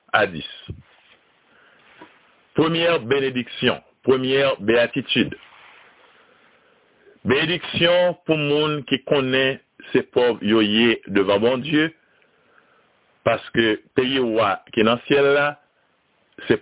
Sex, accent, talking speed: male, French, 85 wpm